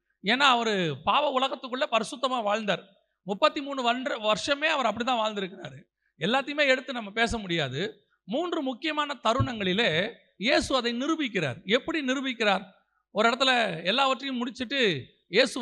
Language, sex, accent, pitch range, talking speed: Tamil, male, native, 215-290 Hz, 120 wpm